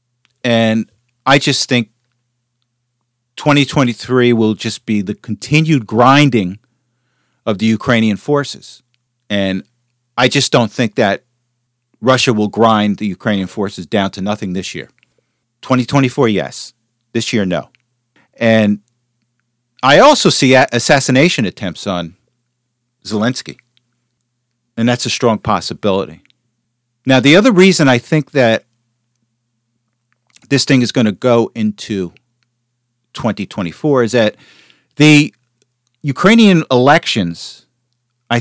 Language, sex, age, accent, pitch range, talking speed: English, male, 40-59, American, 115-130 Hz, 110 wpm